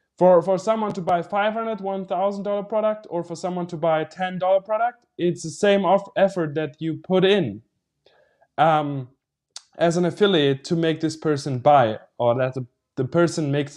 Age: 20-39